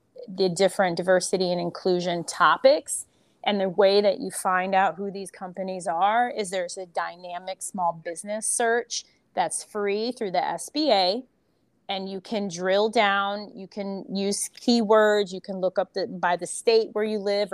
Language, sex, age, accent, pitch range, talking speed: English, female, 30-49, American, 190-235 Hz, 170 wpm